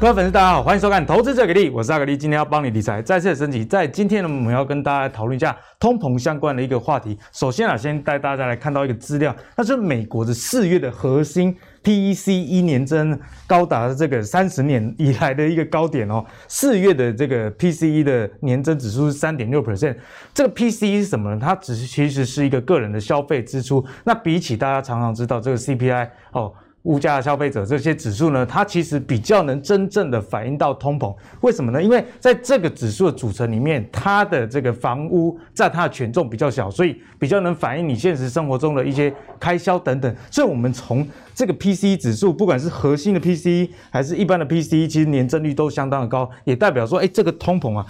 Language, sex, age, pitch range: Chinese, male, 20-39, 125-175 Hz